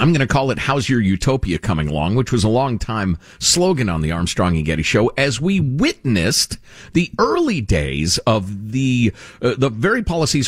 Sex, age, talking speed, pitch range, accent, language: male, 50-69, 190 wpm, 85-135 Hz, American, English